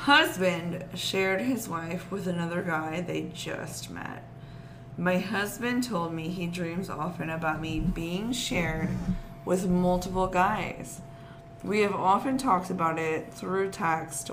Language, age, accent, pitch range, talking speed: English, 20-39, American, 170-195 Hz, 135 wpm